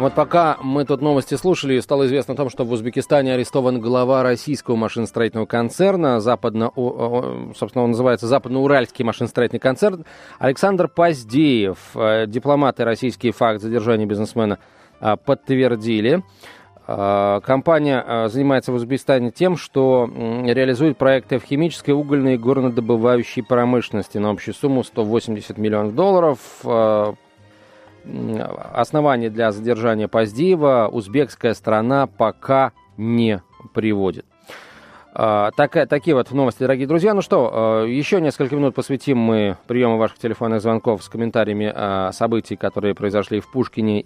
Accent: native